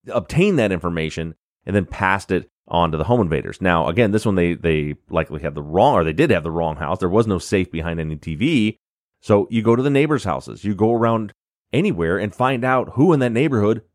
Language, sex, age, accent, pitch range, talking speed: English, male, 30-49, American, 85-120 Hz, 230 wpm